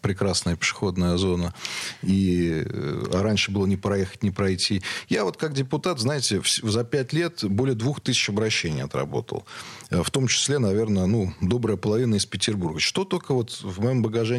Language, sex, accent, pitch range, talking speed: Russian, male, native, 105-135 Hz, 165 wpm